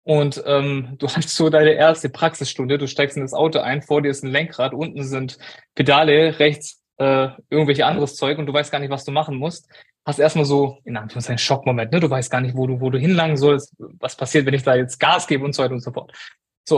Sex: male